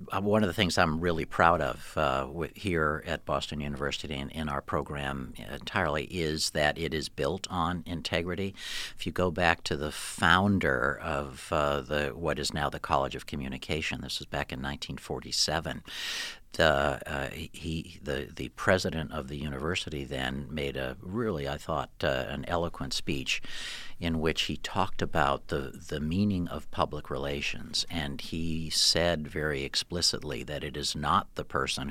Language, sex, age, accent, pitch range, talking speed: English, male, 60-79, American, 70-85 Hz, 165 wpm